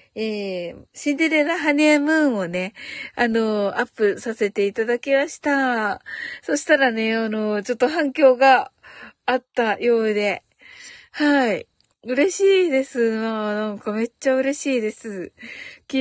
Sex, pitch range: female, 210-280 Hz